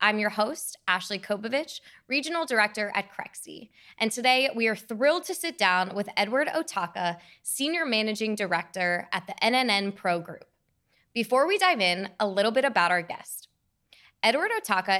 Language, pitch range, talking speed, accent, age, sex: English, 190-245 Hz, 160 wpm, American, 20-39, female